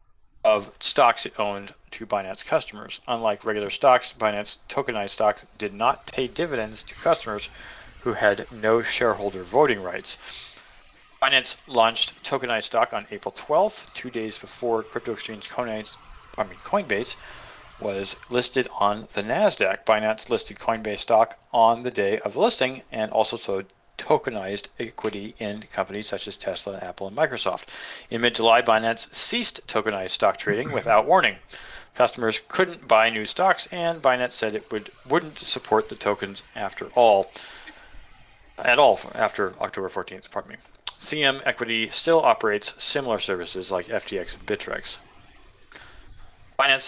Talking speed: 140 wpm